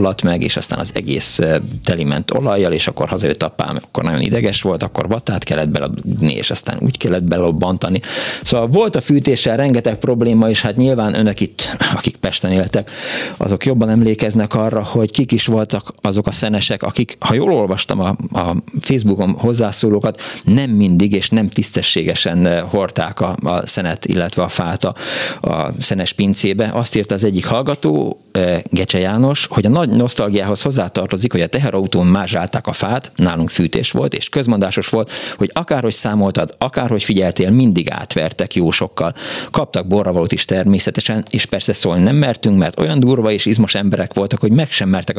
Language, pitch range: Hungarian, 100-120 Hz